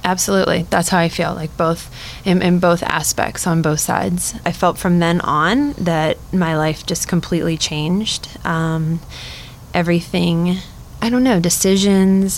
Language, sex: English, female